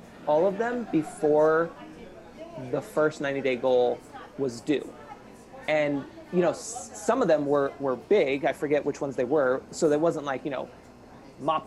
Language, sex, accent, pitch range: English, male, American, 135-175 Hz